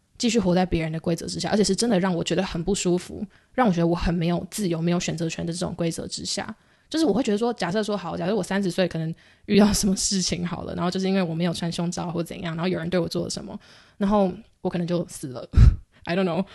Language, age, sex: Chinese, 20-39, female